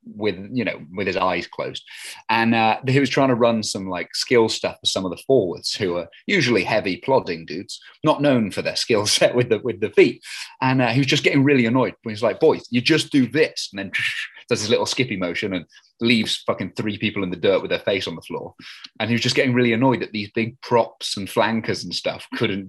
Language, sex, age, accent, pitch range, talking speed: English, male, 30-49, British, 100-130 Hz, 245 wpm